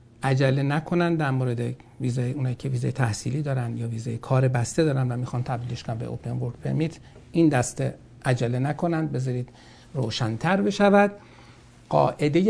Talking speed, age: 145 wpm, 60-79